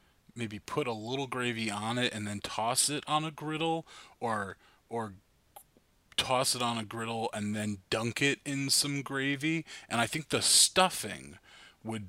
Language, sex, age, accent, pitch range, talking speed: English, male, 20-39, American, 105-135 Hz, 170 wpm